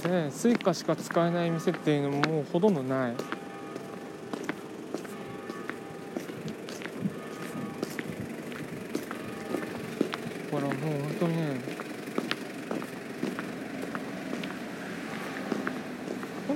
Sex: male